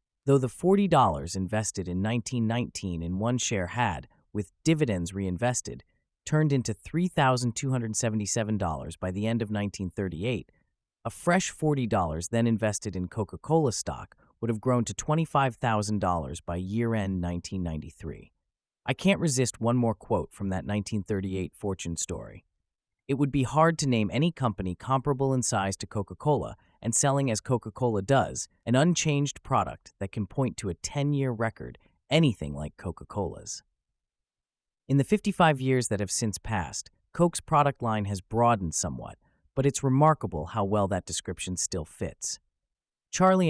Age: 30-49